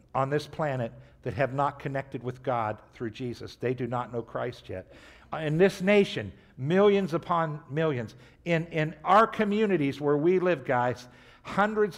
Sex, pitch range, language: male, 120-160 Hz, English